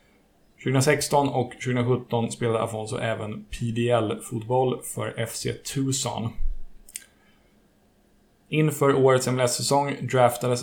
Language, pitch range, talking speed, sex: Swedish, 110-130 Hz, 80 wpm, male